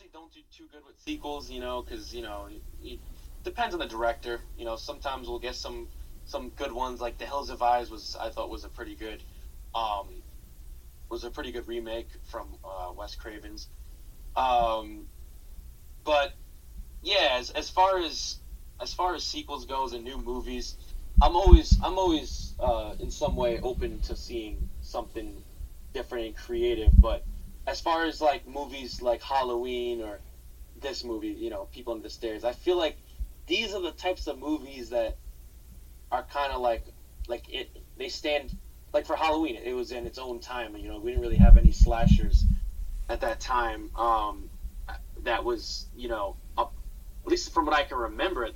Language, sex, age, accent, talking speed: English, male, 20-39, American, 180 wpm